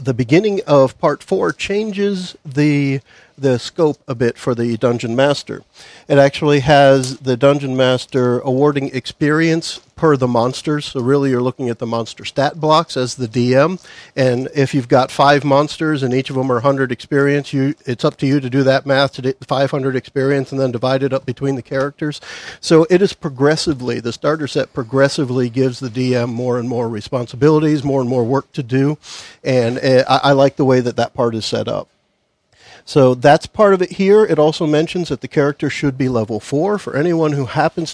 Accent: American